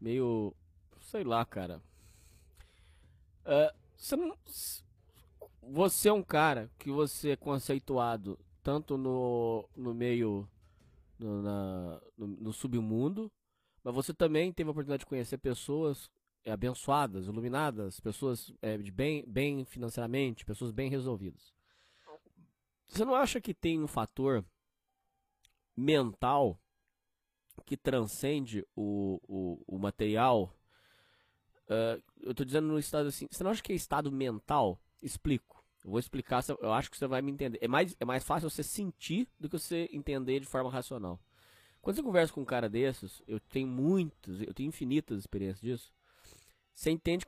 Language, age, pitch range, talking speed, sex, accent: Portuguese, 20-39, 110-150 Hz, 145 wpm, male, Brazilian